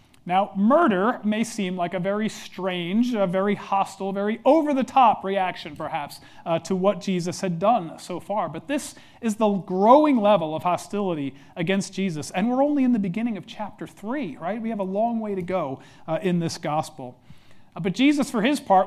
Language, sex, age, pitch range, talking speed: English, male, 40-59, 155-210 Hz, 190 wpm